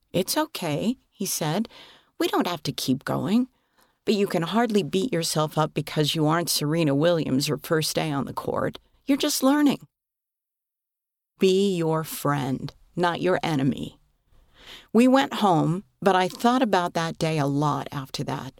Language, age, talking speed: English, 50-69, 160 wpm